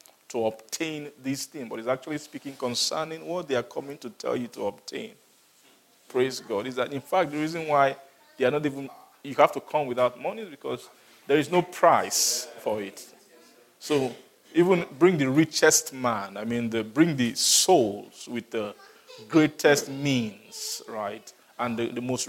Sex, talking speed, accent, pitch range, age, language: male, 180 wpm, Nigerian, 120-150 Hz, 50-69, English